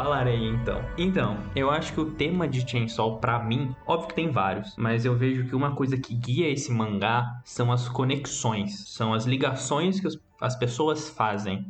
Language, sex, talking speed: Portuguese, male, 195 wpm